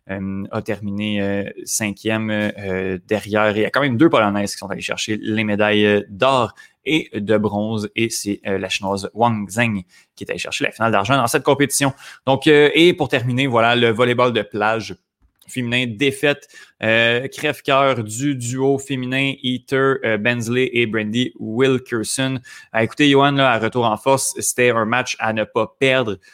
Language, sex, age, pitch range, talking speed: French, male, 20-39, 105-135 Hz, 180 wpm